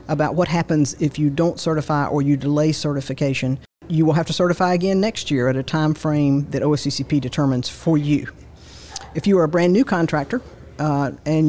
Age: 50-69